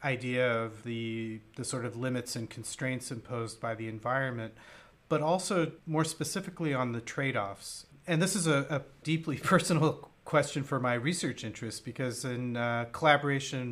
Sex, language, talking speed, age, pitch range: male, English, 155 wpm, 40-59, 115-145 Hz